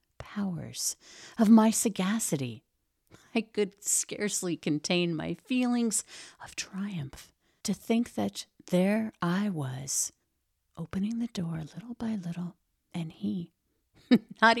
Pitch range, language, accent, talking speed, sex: 150-200 Hz, English, American, 110 wpm, female